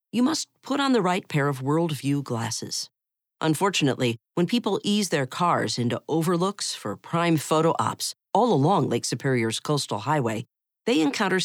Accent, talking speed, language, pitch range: American, 155 wpm, English, 125-190 Hz